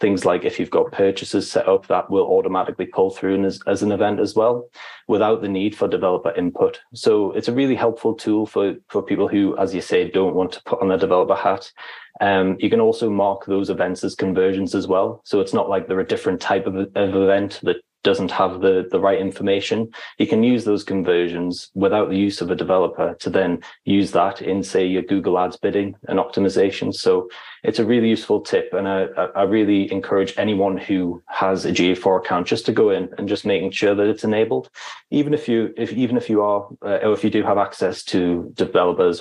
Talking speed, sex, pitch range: 220 wpm, male, 95-125 Hz